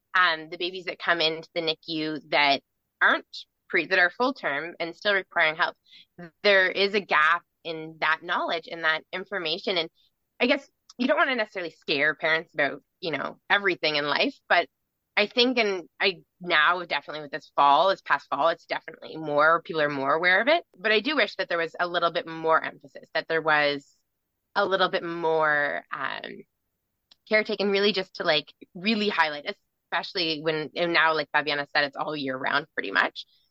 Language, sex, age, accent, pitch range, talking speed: English, female, 20-39, American, 155-195 Hz, 195 wpm